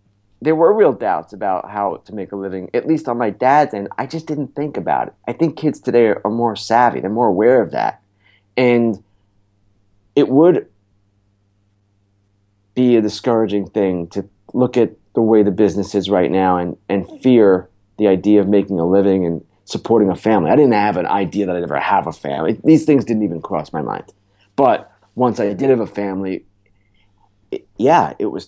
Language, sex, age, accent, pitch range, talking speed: English, male, 30-49, American, 100-115 Hz, 195 wpm